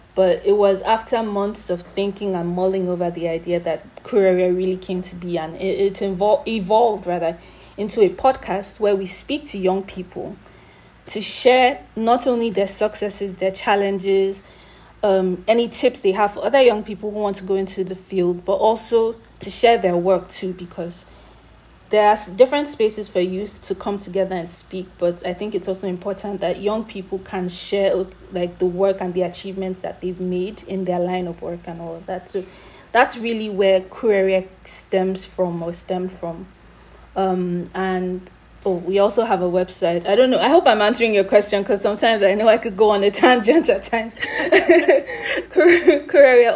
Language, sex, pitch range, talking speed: English, female, 185-215 Hz, 185 wpm